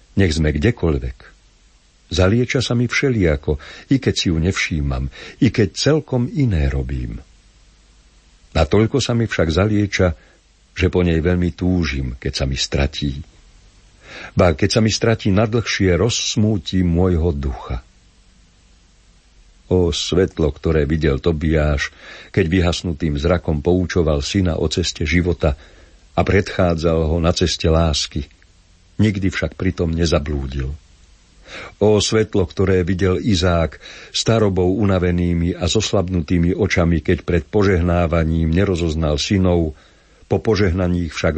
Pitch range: 80-100 Hz